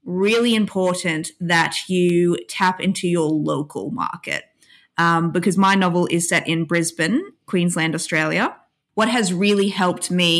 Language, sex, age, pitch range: English, female, 20-39, 170-200 Hz